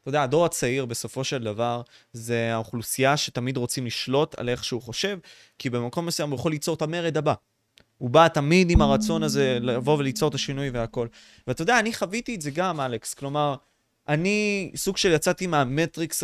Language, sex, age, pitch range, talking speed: Hebrew, male, 20-39, 125-160 Hz, 185 wpm